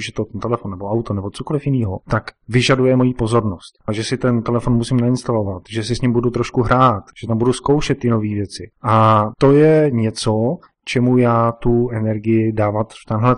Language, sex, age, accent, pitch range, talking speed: Czech, male, 30-49, native, 110-130 Hz, 200 wpm